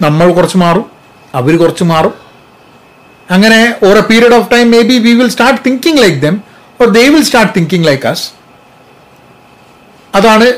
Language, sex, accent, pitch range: Malayalam, male, native, 140-195 Hz